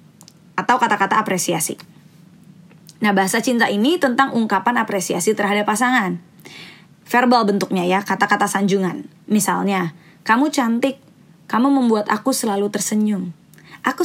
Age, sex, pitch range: 20-39, female, 185-230 Hz